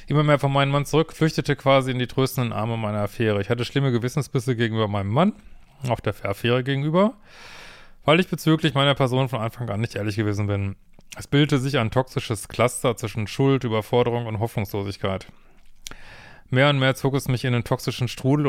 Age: 30-49